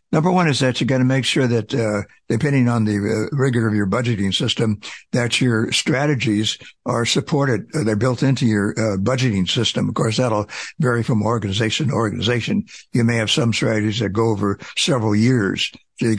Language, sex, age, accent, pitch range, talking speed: English, male, 60-79, American, 105-125 Hz, 195 wpm